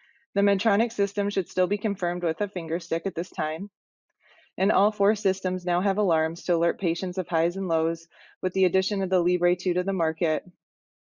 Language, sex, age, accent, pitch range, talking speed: English, female, 20-39, American, 170-205 Hz, 205 wpm